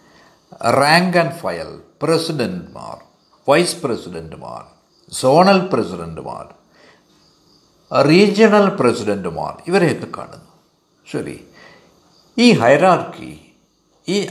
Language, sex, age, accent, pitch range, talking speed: Malayalam, male, 60-79, native, 150-195 Hz, 70 wpm